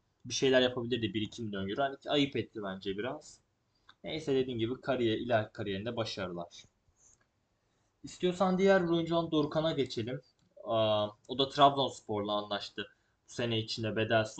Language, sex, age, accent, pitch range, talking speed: Turkish, male, 20-39, native, 110-145 Hz, 135 wpm